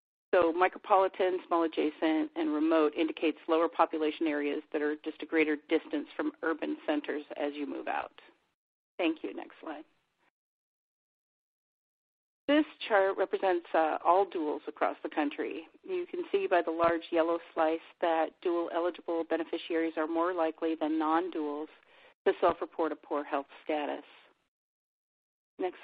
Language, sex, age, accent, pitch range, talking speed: English, female, 40-59, American, 160-245 Hz, 140 wpm